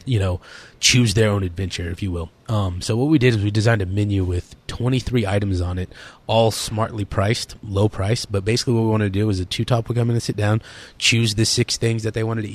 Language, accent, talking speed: English, American, 255 wpm